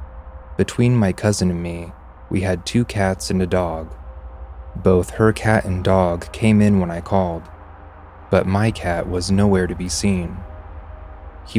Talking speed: 160 wpm